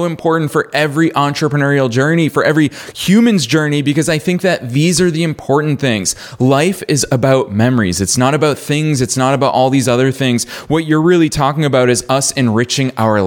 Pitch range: 115-155 Hz